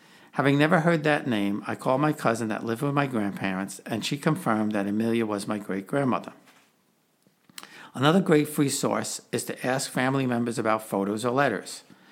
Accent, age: American, 50-69